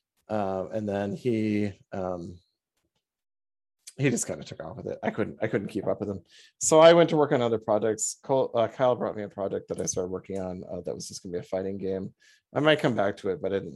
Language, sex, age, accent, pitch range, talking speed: English, male, 30-49, American, 100-140 Hz, 255 wpm